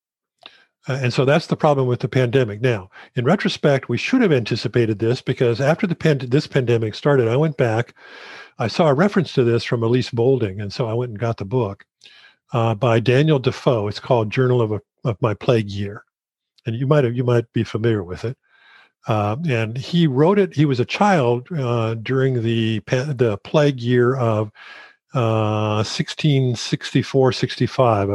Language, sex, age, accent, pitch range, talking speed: English, male, 50-69, American, 115-140 Hz, 180 wpm